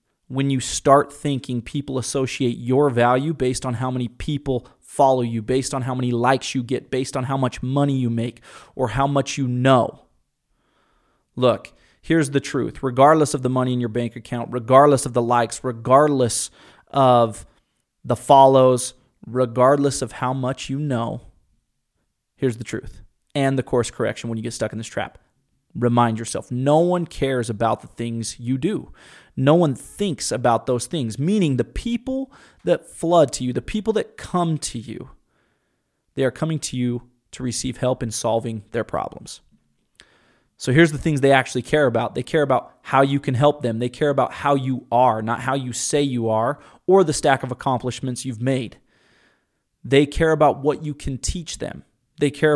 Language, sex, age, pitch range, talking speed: English, male, 30-49, 120-140 Hz, 185 wpm